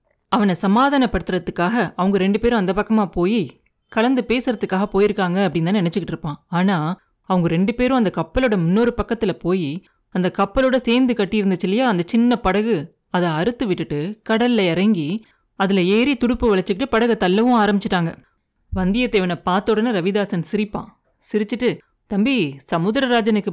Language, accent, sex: Tamil, native, female